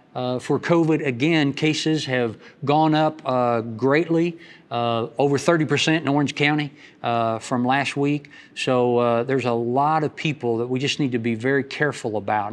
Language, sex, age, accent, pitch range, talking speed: English, male, 50-69, American, 125-155 Hz, 175 wpm